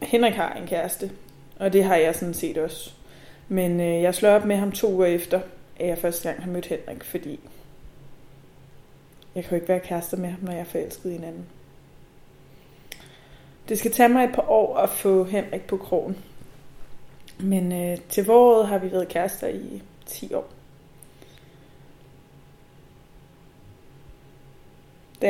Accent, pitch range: Danish, 165-195 Hz